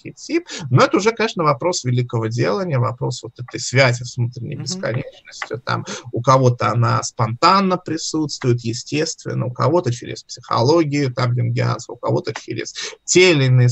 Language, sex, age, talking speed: Russian, male, 20-39, 140 wpm